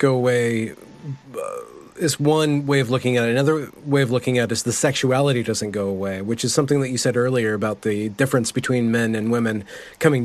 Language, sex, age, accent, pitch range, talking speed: English, male, 30-49, American, 110-130 Hz, 215 wpm